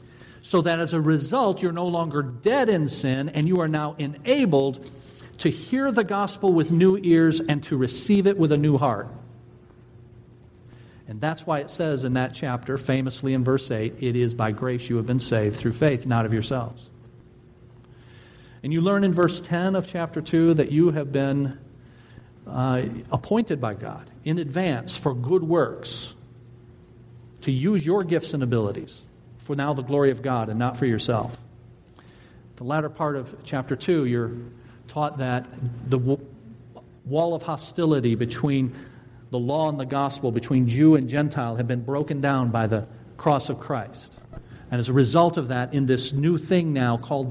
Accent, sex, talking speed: American, male, 175 wpm